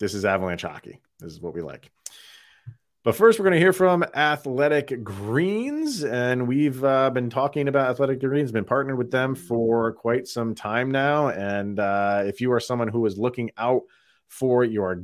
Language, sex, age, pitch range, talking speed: English, male, 30-49, 100-135 Hz, 190 wpm